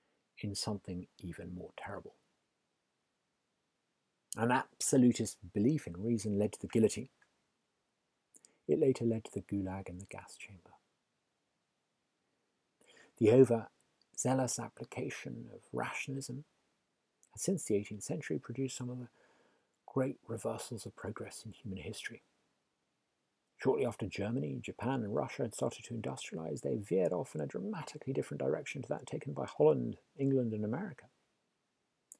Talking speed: 130 wpm